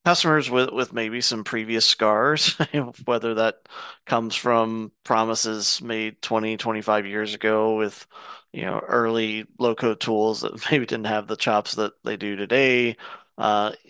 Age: 30-49